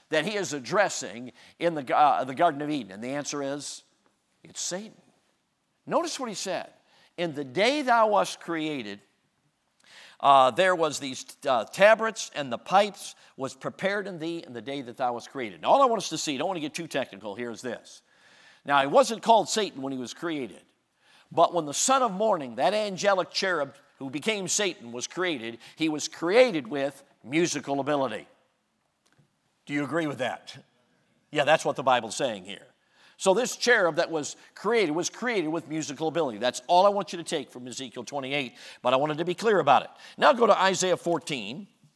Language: English